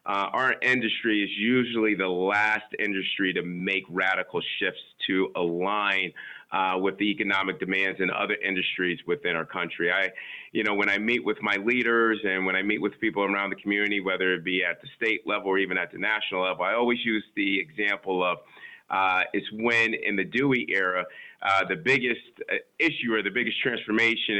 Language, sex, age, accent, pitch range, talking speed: English, male, 30-49, American, 95-115 Hz, 190 wpm